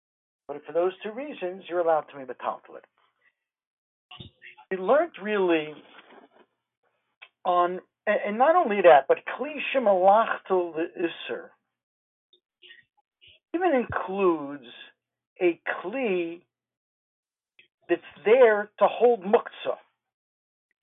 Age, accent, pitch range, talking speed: 60-79, American, 155-235 Hz, 105 wpm